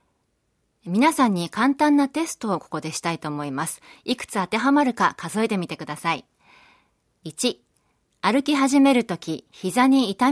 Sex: female